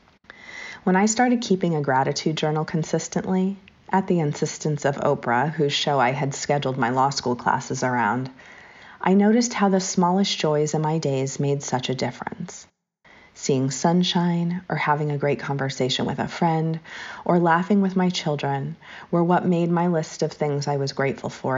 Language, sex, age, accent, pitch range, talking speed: English, female, 30-49, American, 140-180 Hz, 170 wpm